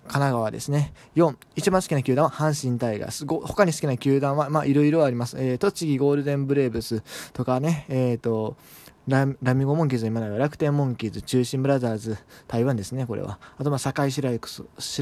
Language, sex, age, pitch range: Japanese, male, 20-39, 125-165 Hz